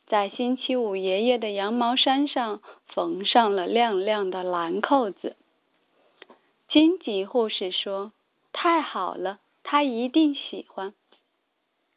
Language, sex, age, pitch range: Chinese, female, 20-39, 200-275 Hz